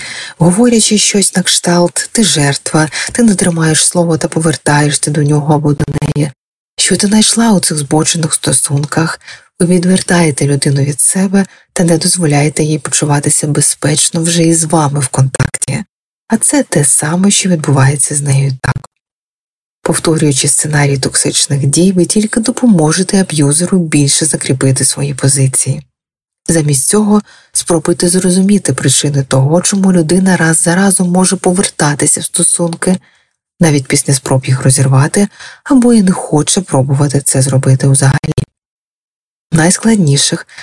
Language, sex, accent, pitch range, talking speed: Ukrainian, female, native, 140-185 Hz, 135 wpm